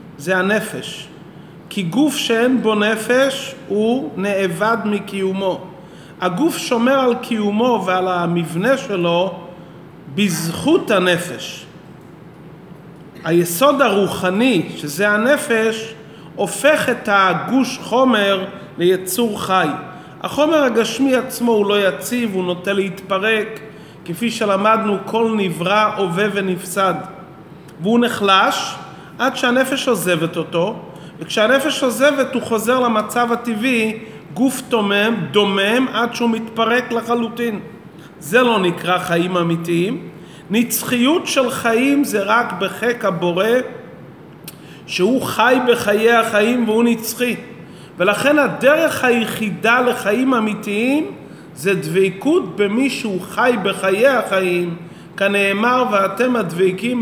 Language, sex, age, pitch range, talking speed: Hebrew, male, 30-49, 185-240 Hz, 100 wpm